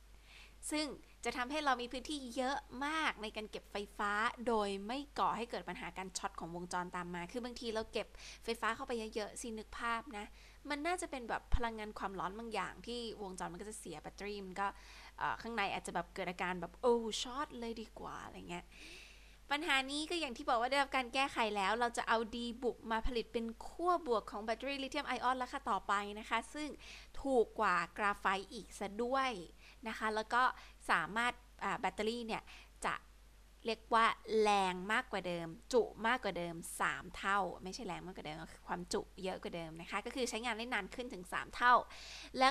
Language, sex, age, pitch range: Thai, female, 20-39, 195-250 Hz